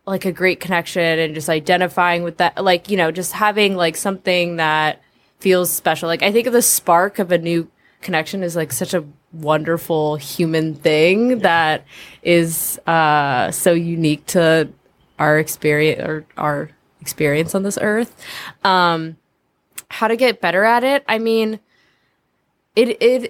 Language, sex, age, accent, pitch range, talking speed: English, female, 20-39, American, 155-195 Hz, 155 wpm